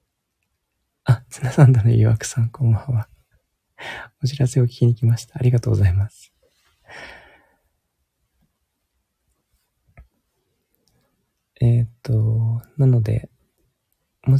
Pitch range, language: 105-125 Hz, Japanese